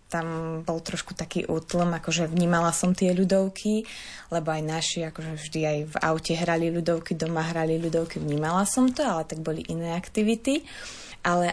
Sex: female